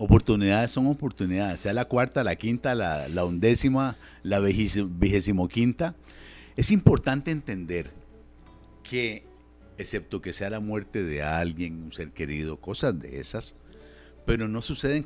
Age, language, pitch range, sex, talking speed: 50-69, Spanish, 95-130 Hz, male, 140 wpm